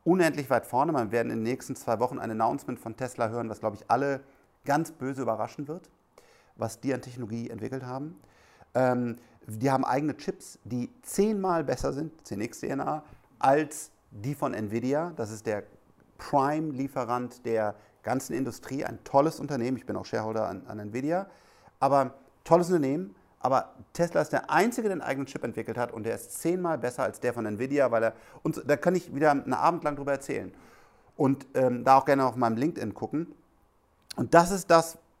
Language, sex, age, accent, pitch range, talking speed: German, male, 50-69, German, 115-150 Hz, 185 wpm